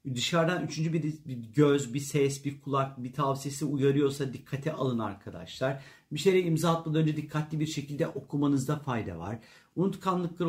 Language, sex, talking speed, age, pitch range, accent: Turkish, male, 155 wpm, 50-69, 125-160 Hz, native